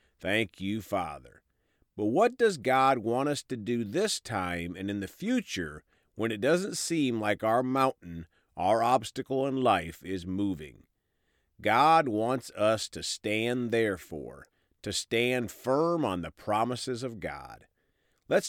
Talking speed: 145 wpm